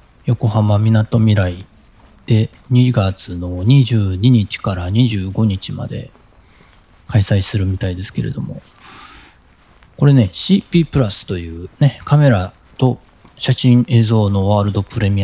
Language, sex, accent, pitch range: Japanese, male, native, 95-120 Hz